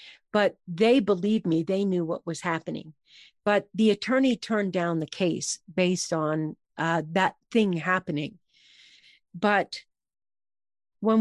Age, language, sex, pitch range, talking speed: 50-69, English, female, 185-245 Hz, 130 wpm